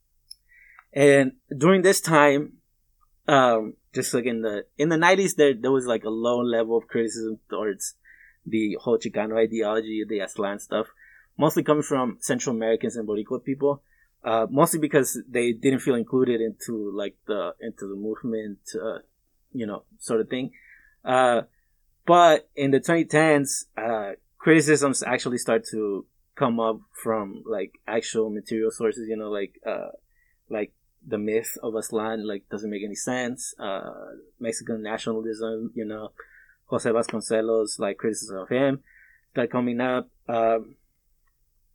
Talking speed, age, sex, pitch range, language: 145 wpm, 20-39, male, 110-135 Hz, English